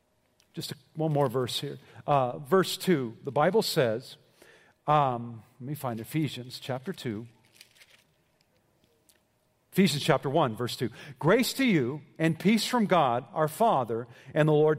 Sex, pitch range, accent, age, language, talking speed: male, 155-200 Hz, American, 50-69, English, 140 wpm